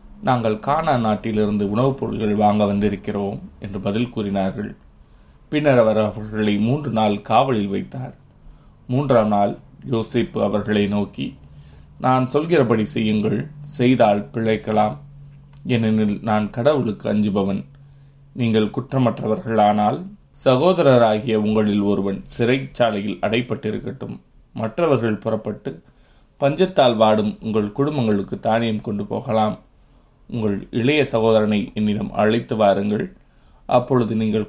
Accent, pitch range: native, 105-125 Hz